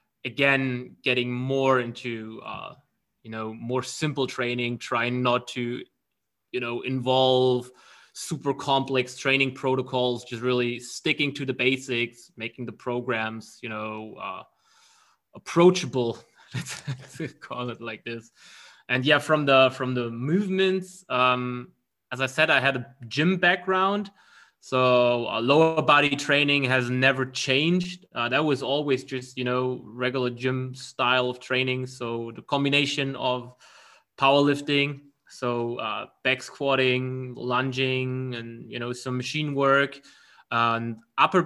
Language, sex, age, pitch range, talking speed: English, male, 20-39, 120-140 Hz, 135 wpm